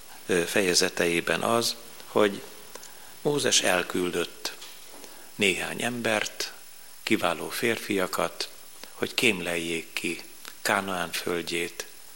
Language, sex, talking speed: Hungarian, male, 70 wpm